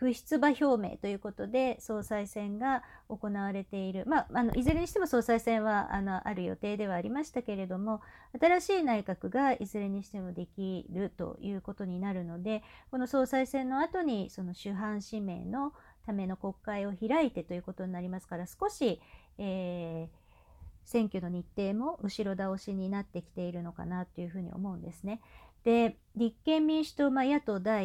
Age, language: 50-69, Japanese